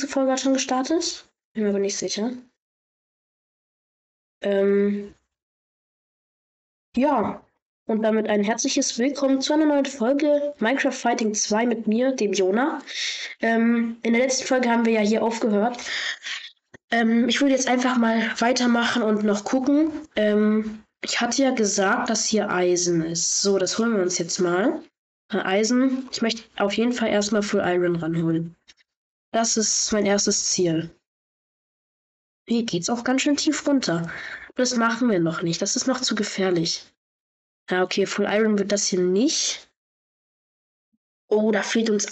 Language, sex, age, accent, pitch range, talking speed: German, female, 20-39, German, 195-250 Hz, 150 wpm